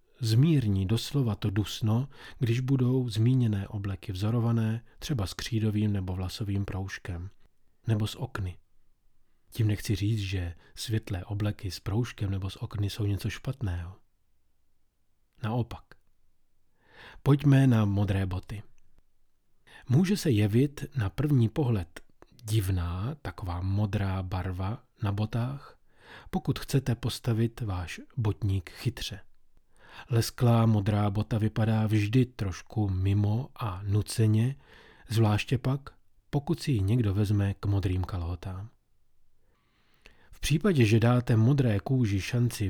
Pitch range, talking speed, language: 100-120 Hz, 115 wpm, Czech